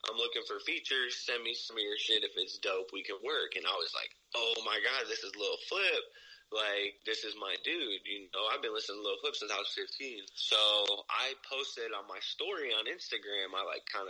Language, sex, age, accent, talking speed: English, male, 20-39, American, 235 wpm